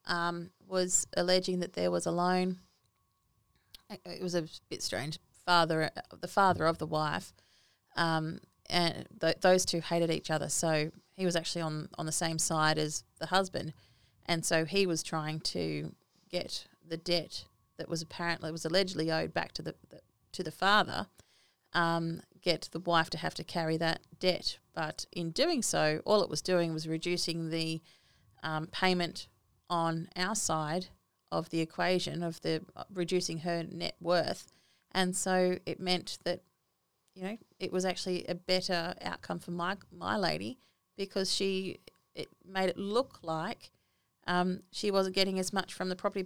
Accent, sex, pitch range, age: Australian, female, 160-185 Hz, 30-49